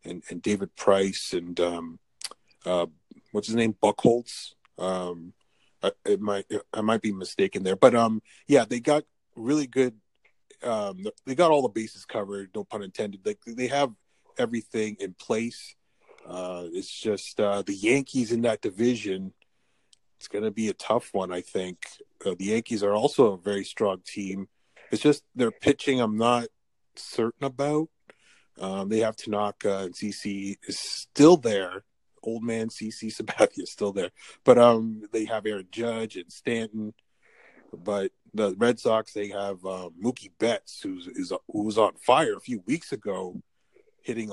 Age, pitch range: 30-49, 100-125 Hz